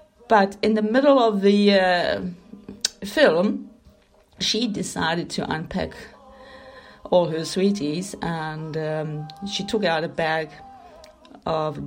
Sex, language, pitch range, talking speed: female, English, 175-220 Hz, 115 wpm